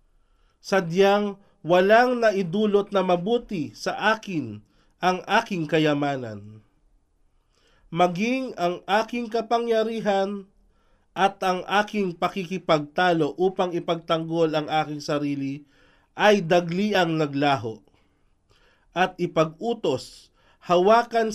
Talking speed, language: 80 wpm, Filipino